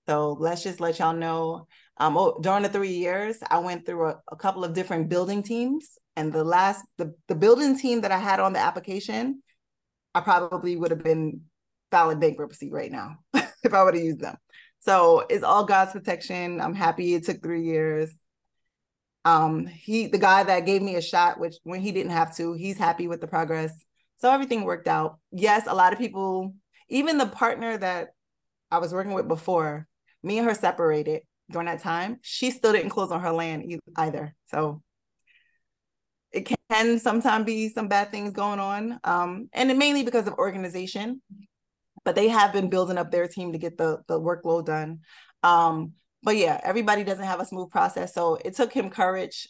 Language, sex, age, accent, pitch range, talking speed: English, female, 20-39, American, 165-215 Hz, 195 wpm